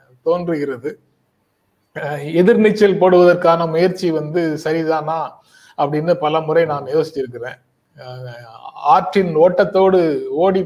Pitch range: 145-185 Hz